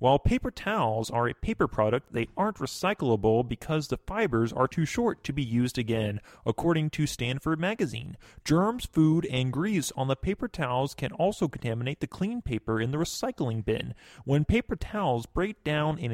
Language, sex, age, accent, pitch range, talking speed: English, male, 30-49, American, 115-175 Hz, 180 wpm